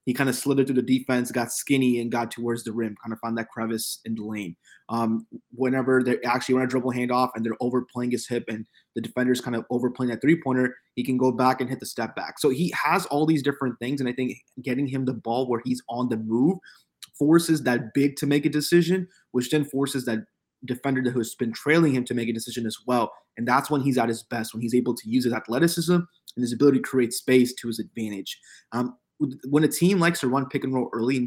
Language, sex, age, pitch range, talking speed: English, male, 20-39, 115-135 Hz, 250 wpm